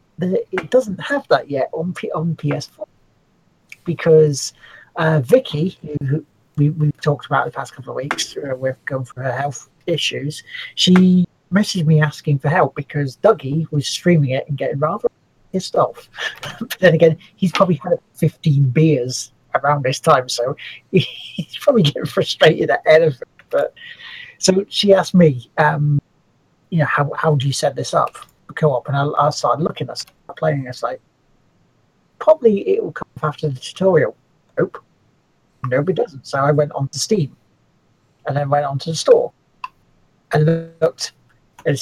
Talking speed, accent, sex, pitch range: 165 wpm, British, male, 145-190 Hz